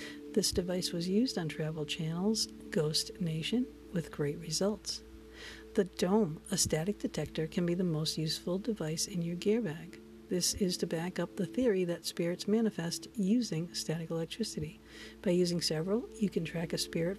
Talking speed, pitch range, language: 170 wpm, 160-205 Hz, English